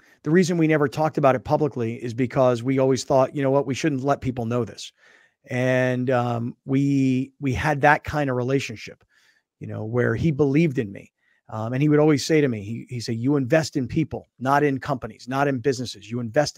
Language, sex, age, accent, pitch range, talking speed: English, male, 40-59, American, 120-150 Hz, 220 wpm